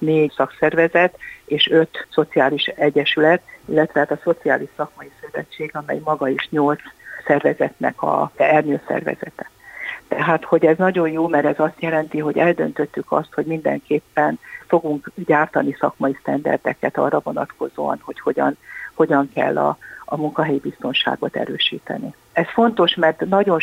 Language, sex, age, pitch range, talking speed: Hungarian, female, 60-79, 145-165 Hz, 130 wpm